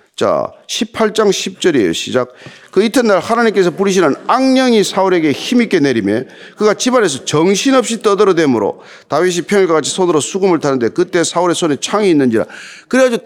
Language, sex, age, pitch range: Korean, male, 40-59, 155-240 Hz